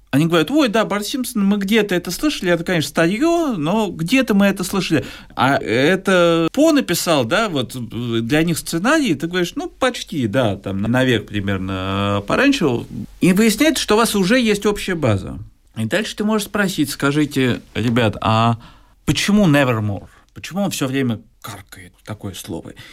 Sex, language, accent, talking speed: male, Russian, native, 165 wpm